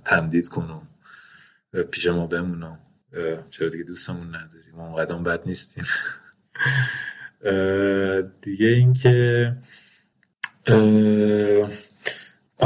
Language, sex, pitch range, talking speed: Persian, male, 90-110 Hz, 75 wpm